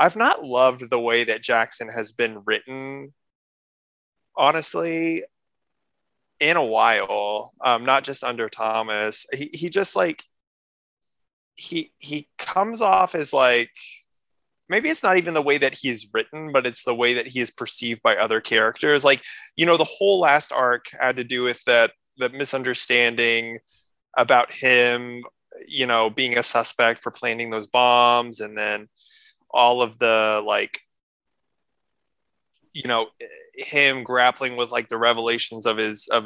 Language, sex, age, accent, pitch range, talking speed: English, male, 20-39, American, 115-140 Hz, 150 wpm